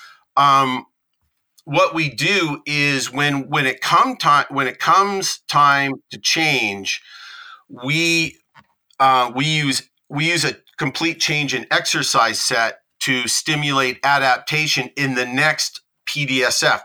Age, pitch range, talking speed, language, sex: 40-59, 130-155 Hz, 125 wpm, English, male